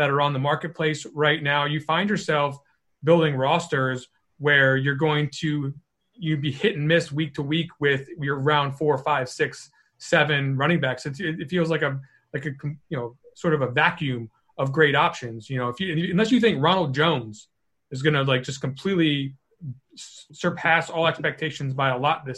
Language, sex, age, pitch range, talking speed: English, male, 30-49, 135-165 Hz, 190 wpm